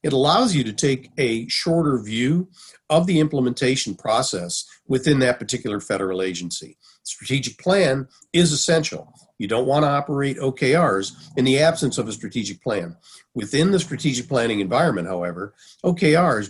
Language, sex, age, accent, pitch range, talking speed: English, male, 50-69, American, 110-155 Hz, 150 wpm